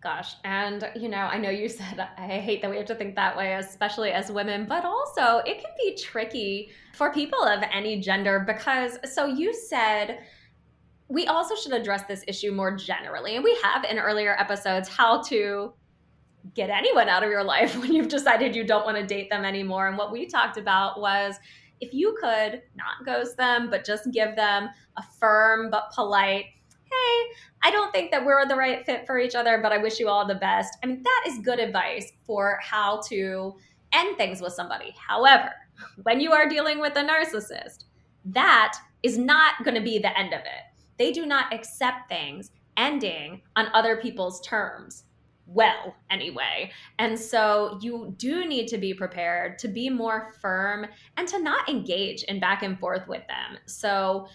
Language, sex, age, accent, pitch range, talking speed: English, female, 20-39, American, 200-255 Hz, 190 wpm